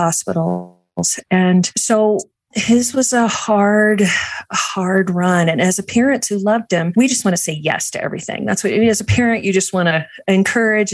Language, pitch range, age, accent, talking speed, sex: English, 170-195 Hz, 40-59, American, 195 wpm, female